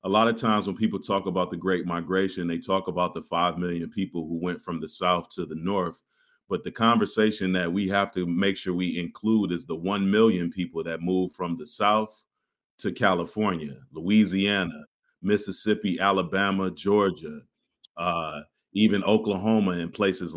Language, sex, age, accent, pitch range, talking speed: English, male, 30-49, American, 95-110 Hz, 170 wpm